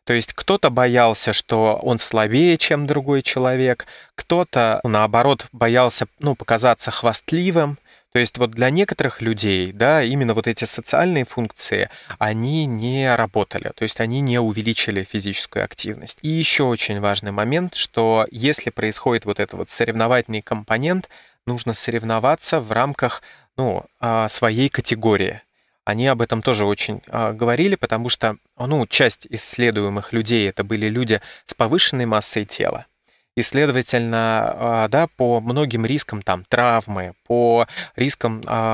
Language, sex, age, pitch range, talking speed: Russian, male, 20-39, 110-130 Hz, 135 wpm